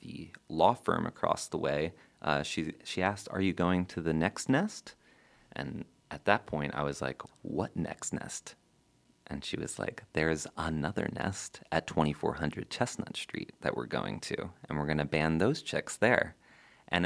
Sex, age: male, 30-49